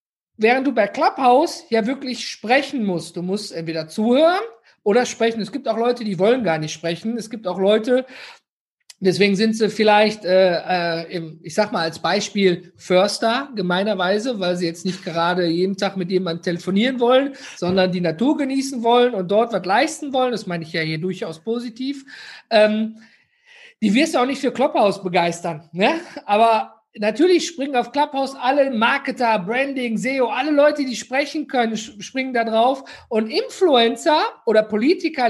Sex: male